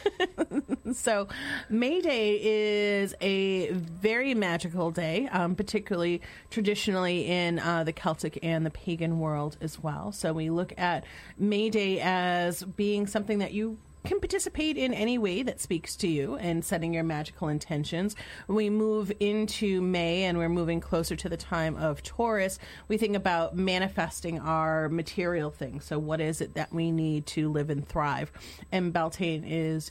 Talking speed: 165 wpm